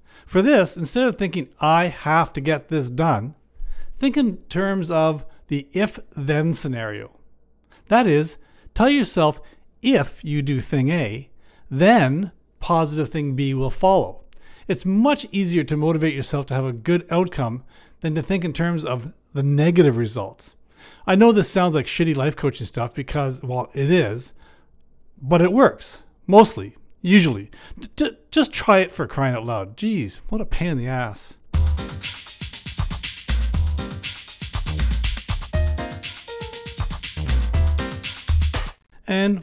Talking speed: 130 wpm